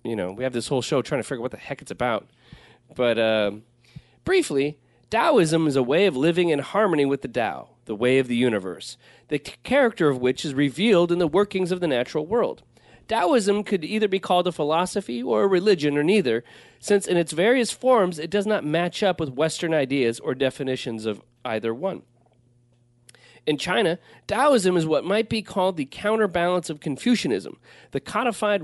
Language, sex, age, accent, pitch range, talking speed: English, male, 30-49, American, 130-190 Hz, 195 wpm